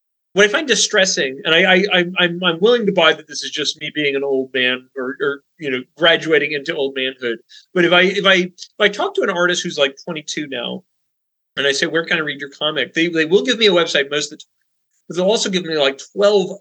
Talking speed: 260 wpm